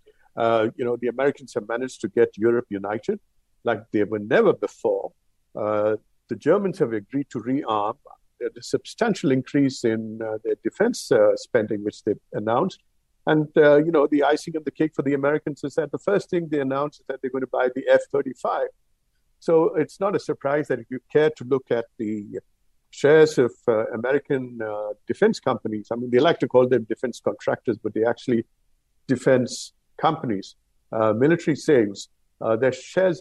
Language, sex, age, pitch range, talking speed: English, male, 50-69, 120-180 Hz, 180 wpm